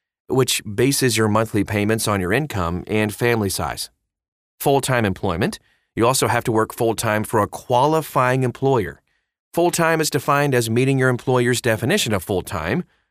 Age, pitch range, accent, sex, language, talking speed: 30-49, 100-135 Hz, American, male, English, 150 wpm